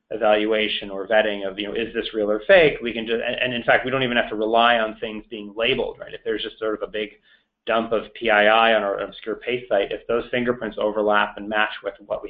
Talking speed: 260 wpm